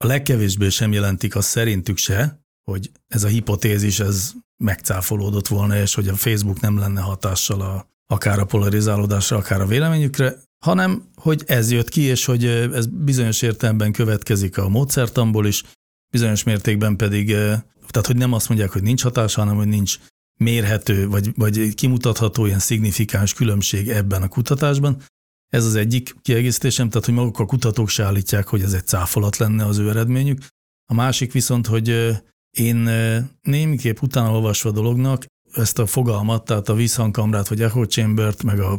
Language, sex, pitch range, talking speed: Hungarian, male, 105-125 Hz, 160 wpm